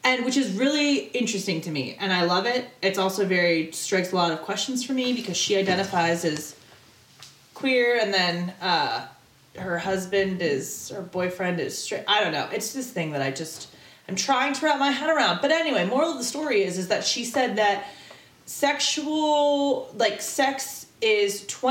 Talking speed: 190 wpm